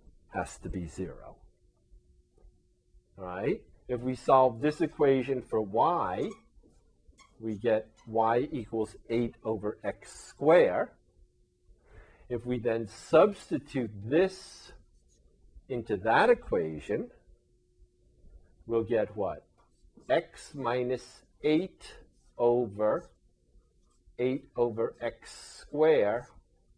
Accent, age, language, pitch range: American, 50-69, English, 100-135 Hz